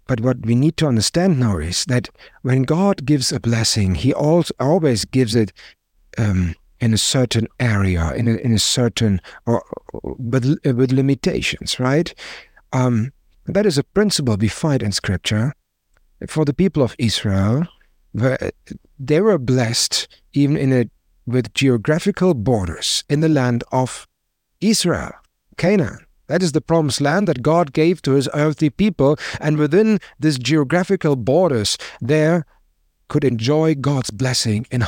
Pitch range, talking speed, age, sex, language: 110-155 Hz, 150 wpm, 50-69, male, English